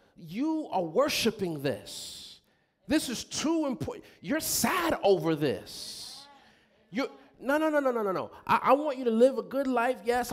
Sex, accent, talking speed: male, American, 165 wpm